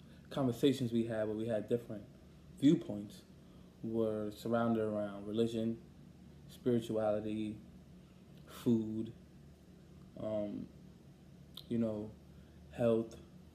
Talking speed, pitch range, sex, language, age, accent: 80 wpm, 110-120 Hz, male, English, 20-39, American